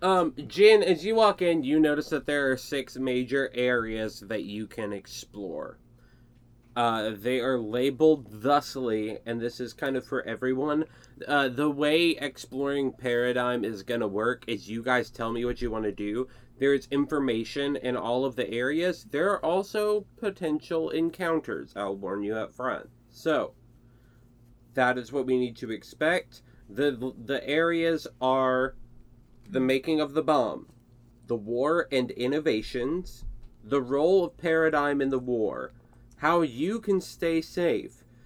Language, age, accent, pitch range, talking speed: English, 20-39, American, 120-150 Hz, 155 wpm